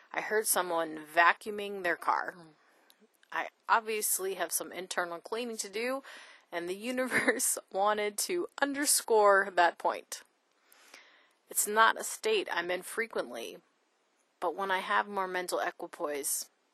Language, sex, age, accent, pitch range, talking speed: English, female, 30-49, American, 160-215 Hz, 130 wpm